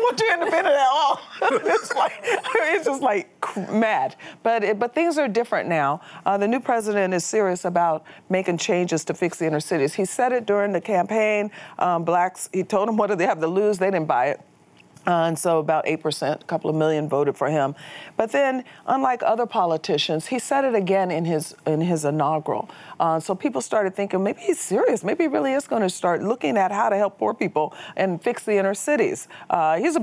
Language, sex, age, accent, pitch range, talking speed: English, female, 40-59, American, 160-220 Hz, 220 wpm